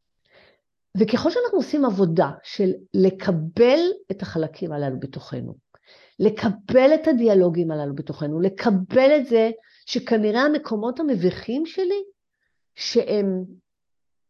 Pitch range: 180-265 Hz